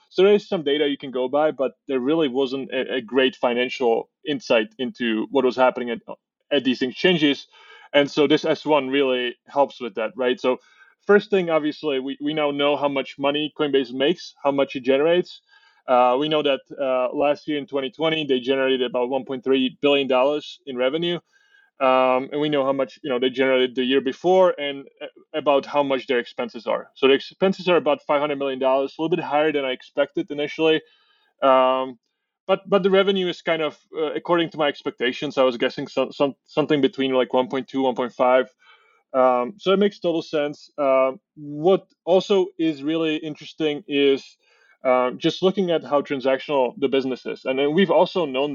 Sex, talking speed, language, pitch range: male, 190 wpm, English, 130-160 Hz